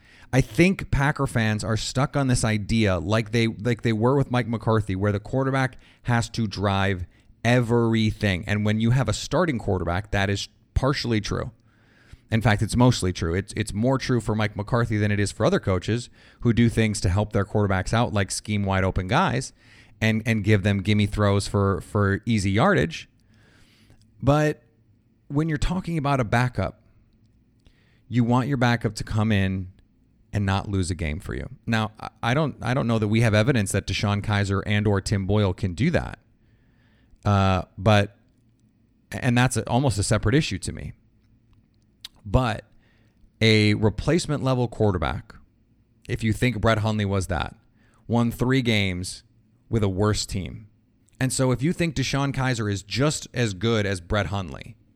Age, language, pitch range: 30-49, English, 105-120 Hz